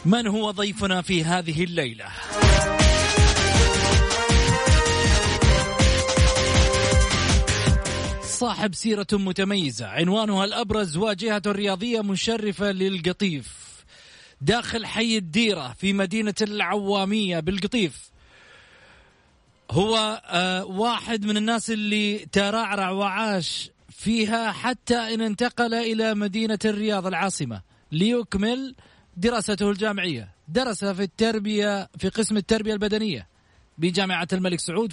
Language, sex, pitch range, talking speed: Arabic, male, 185-225 Hz, 85 wpm